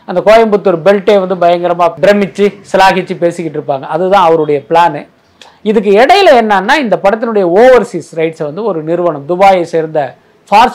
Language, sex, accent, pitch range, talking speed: Tamil, male, native, 170-230 Hz, 140 wpm